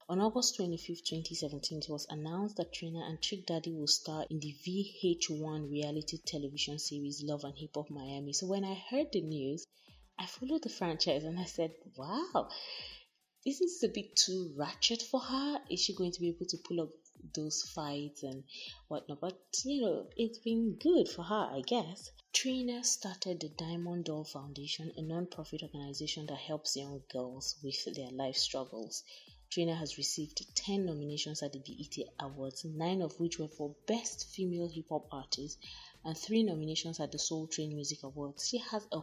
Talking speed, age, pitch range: 180 wpm, 20-39, 145-180 Hz